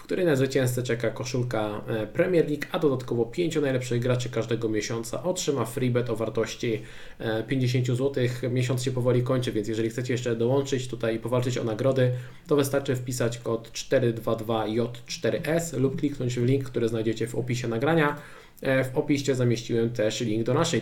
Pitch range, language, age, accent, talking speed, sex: 115-145 Hz, Polish, 20-39, native, 155 wpm, male